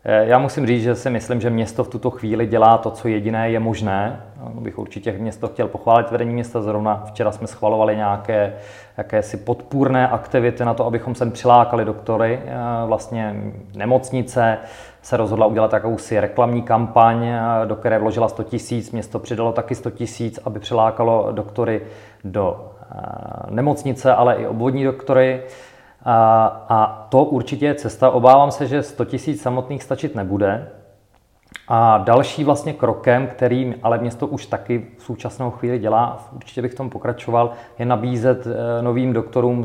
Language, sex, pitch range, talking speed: Czech, male, 110-125 Hz, 150 wpm